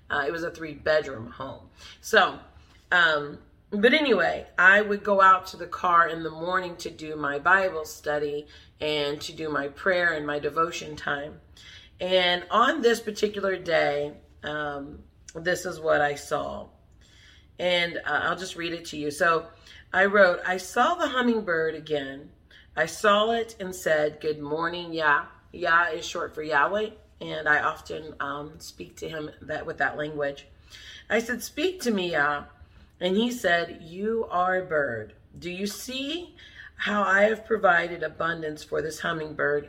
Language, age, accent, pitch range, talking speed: English, 40-59, American, 150-195 Hz, 165 wpm